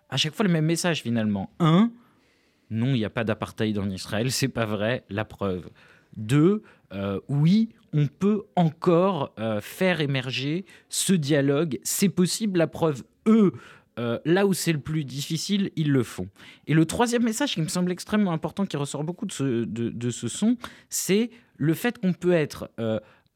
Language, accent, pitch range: French, French, 115-180 Hz